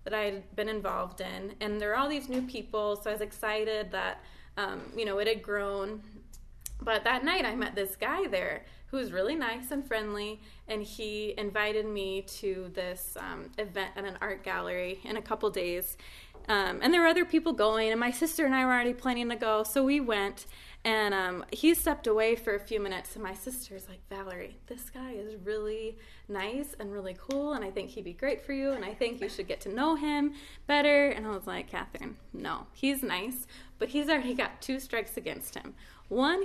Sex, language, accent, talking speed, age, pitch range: female, English, American, 215 wpm, 20-39, 205-275 Hz